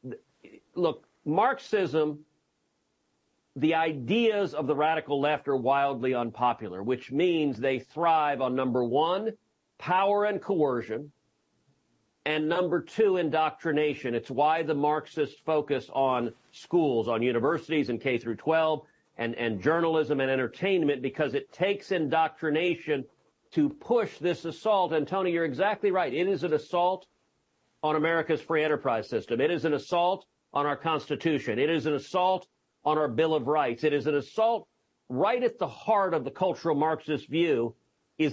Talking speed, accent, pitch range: 145 wpm, American, 145-185 Hz